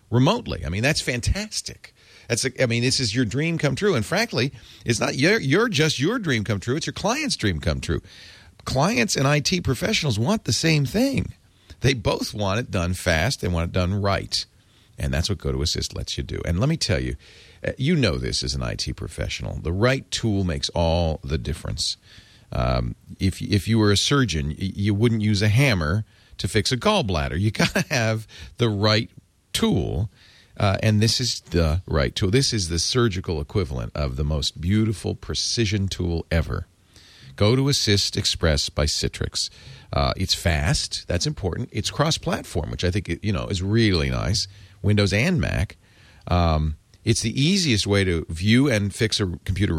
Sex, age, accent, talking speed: male, 40-59, American, 185 wpm